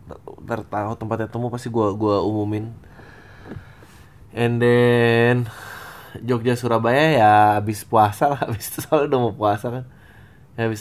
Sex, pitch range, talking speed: male, 110-130 Hz, 115 wpm